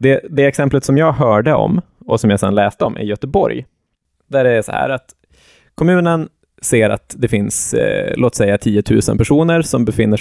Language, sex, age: Swedish, male, 20-39